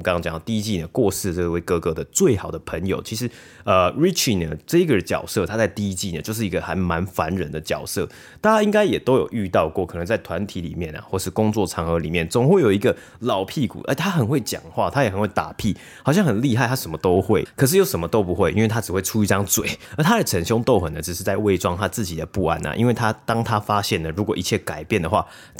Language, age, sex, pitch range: Chinese, 20-39, male, 90-115 Hz